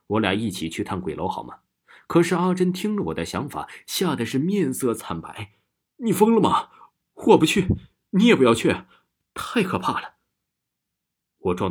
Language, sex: Chinese, male